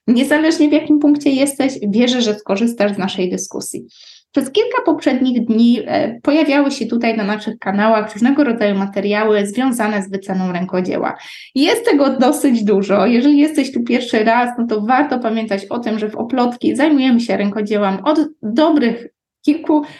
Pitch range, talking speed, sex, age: 210-280 Hz, 155 wpm, female, 20-39